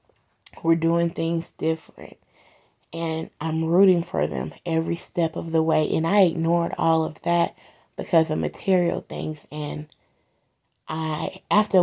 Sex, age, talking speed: female, 20-39, 135 wpm